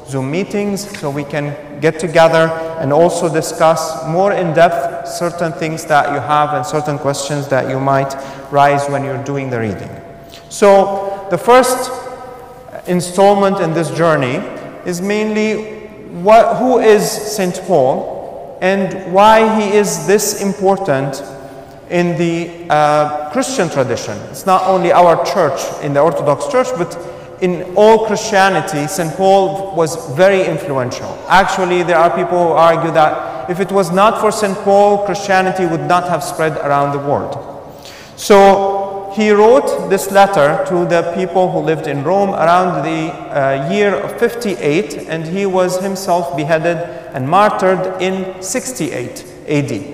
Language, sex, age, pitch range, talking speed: English, male, 30-49, 160-195 Hz, 145 wpm